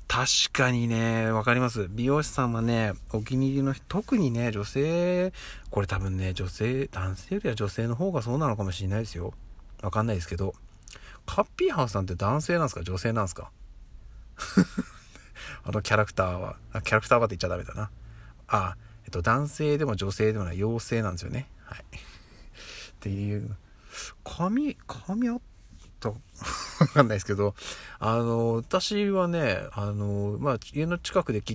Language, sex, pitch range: Japanese, male, 100-145 Hz